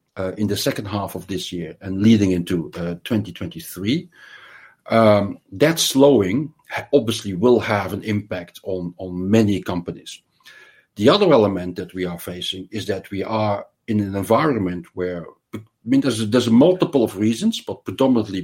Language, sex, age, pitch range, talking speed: English, male, 50-69, 90-115 Hz, 165 wpm